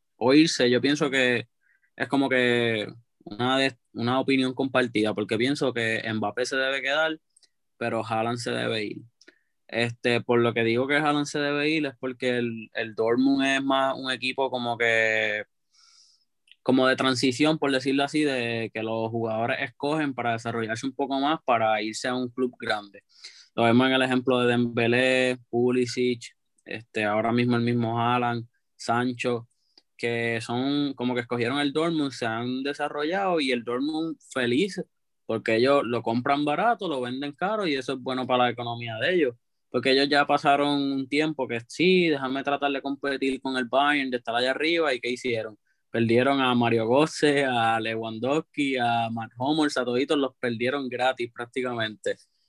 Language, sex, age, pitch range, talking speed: Spanish, male, 20-39, 120-140 Hz, 170 wpm